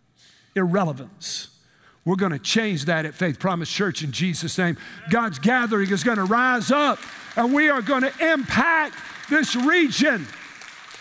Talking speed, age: 155 wpm, 50-69